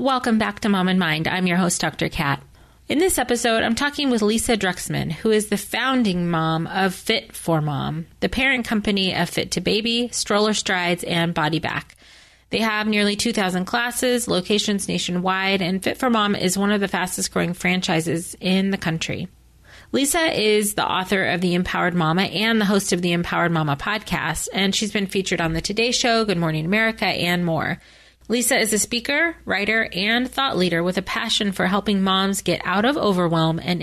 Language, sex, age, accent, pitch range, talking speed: English, female, 30-49, American, 175-220 Hz, 195 wpm